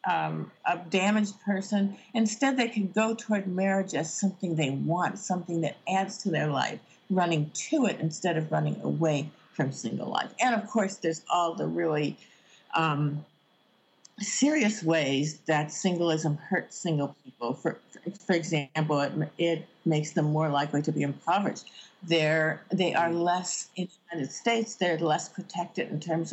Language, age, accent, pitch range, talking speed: English, 50-69, American, 155-190 Hz, 160 wpm